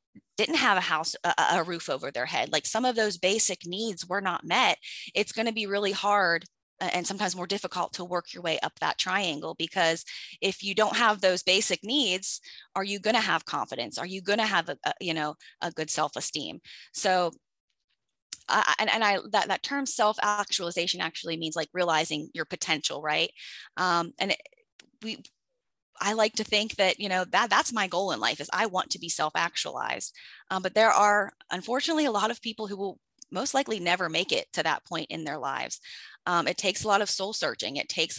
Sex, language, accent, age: female, English, American, 20-39